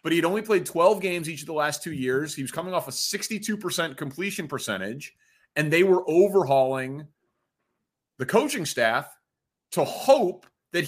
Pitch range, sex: 135-185 Hz, male